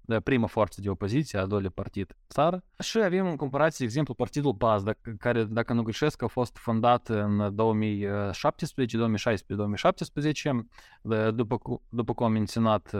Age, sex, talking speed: 20-39, male, 135 wpm